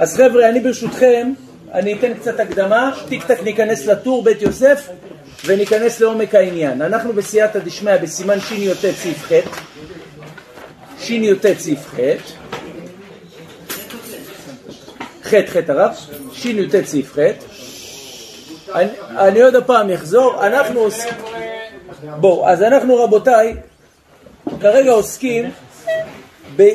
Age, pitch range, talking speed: 50-69, 195-245 Hz, 95 wpm